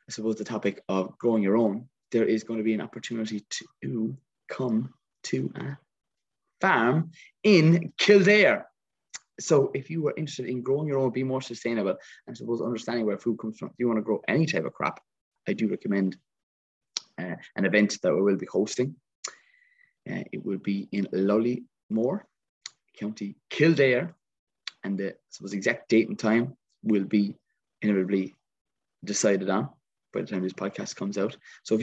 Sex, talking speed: male, 170 wpm